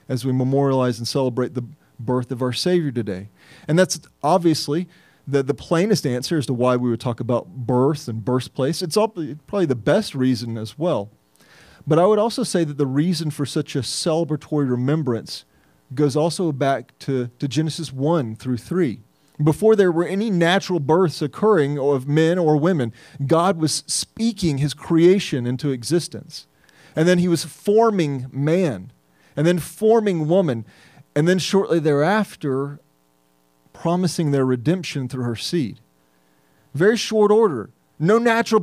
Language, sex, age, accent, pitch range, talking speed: English, male, 40-59, American, 125-170 Hz, 155 wpm